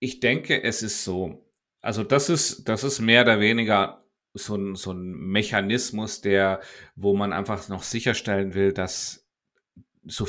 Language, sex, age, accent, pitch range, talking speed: German, male, 30-49, German, 95-115 Hz, 150 wpm